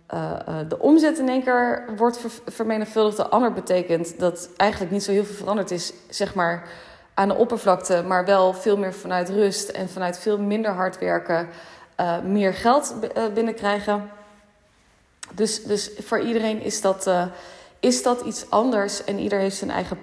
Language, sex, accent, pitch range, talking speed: Dutch, female, Dutch, 180-215 Hz, 155 wpm